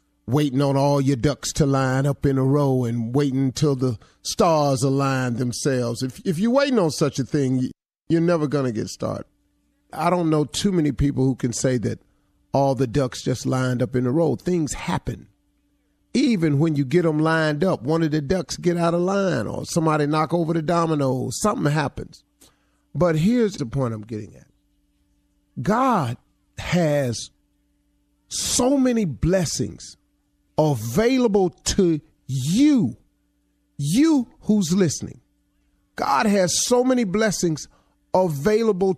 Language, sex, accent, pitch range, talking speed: English, male, American, 120-185 Hz, 155 wpm